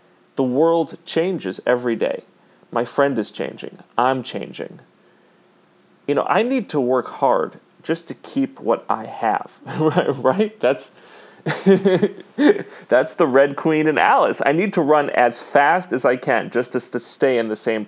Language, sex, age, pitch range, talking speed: English, male, 40-59, 125-195 Hz, 160 wpm